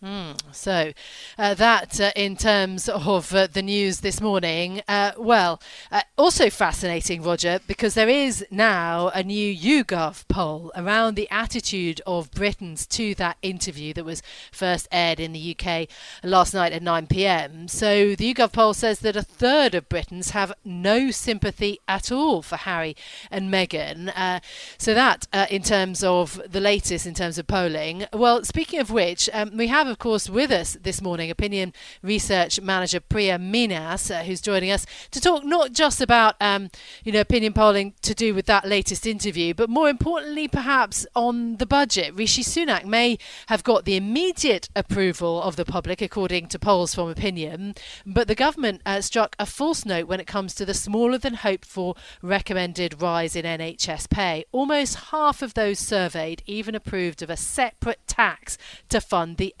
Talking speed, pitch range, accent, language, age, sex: 175 wpm, 180-225 Hz, British, English, 40-59, female